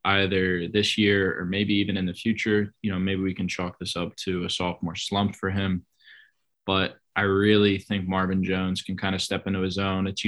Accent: American